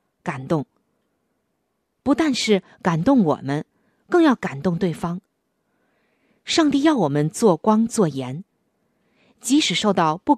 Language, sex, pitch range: Chinese, female, 170-235 Hz